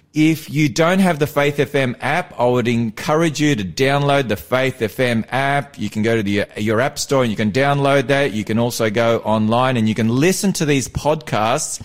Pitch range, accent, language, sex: 115-150 Hz, Australian, English, male